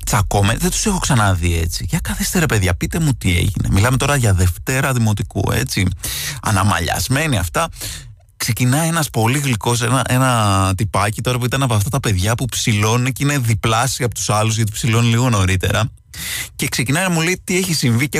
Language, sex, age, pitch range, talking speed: Greek, male, 20-39, 105-150 Hz, 185 wpm